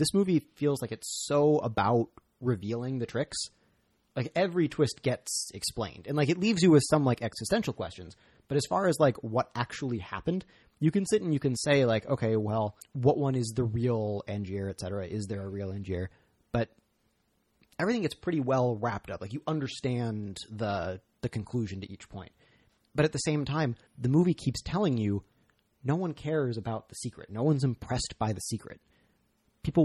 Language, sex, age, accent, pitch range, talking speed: English, male, 30-49, American, 110-140 Hz, 190 wpm